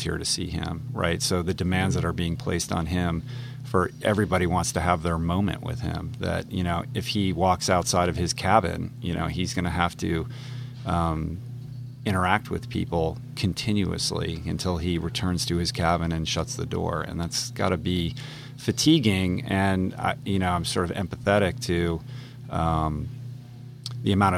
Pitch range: 85-115 Hz